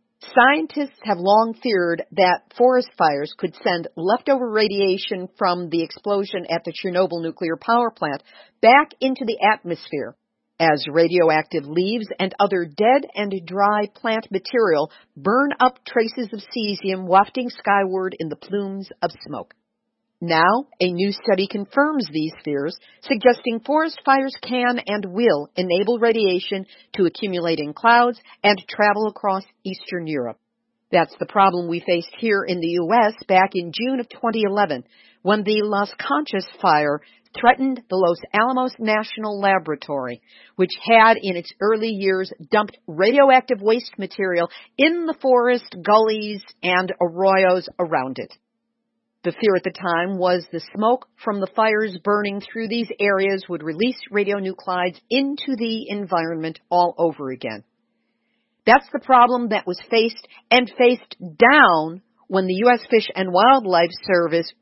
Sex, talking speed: female, 140 wpm